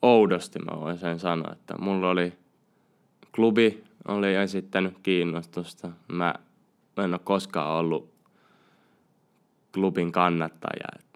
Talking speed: 100 wpm